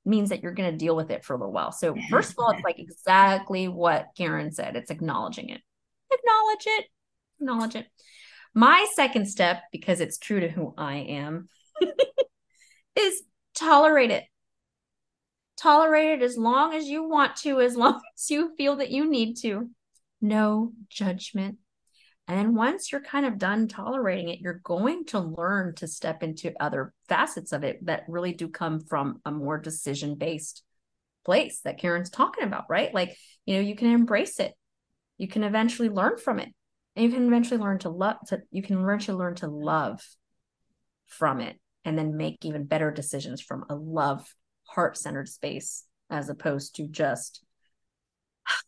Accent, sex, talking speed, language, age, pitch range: American, female, 175 wpm, English, 30-49, 170-260 Hz